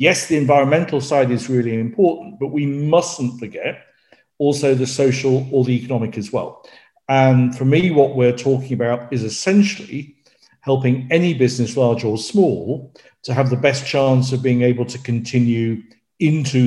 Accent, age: British, 50-69